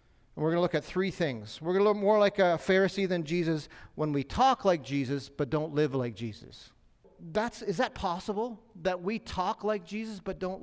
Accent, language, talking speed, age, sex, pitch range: American, English, 205 wpm, 40-59, male, 155-195 Hz